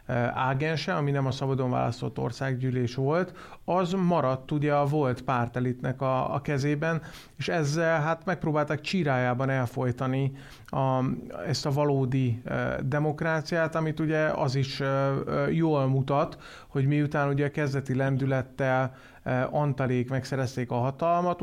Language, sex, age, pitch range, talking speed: Hungarian, male, 30-49, 130-150 Hz, 135 wpm